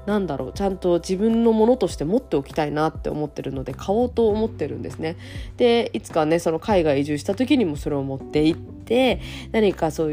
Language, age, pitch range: Japanese, 20-39, 155-245 Hz